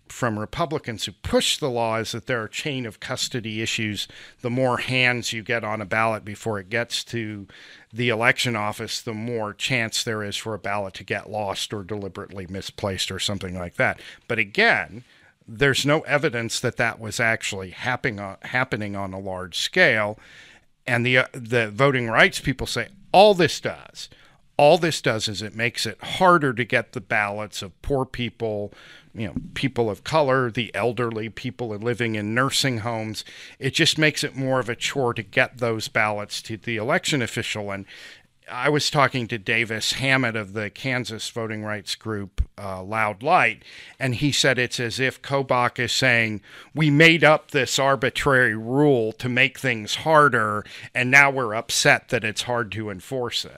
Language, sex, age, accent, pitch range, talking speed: English, male, 50-69, American, 105-130 Hz, 180 wpm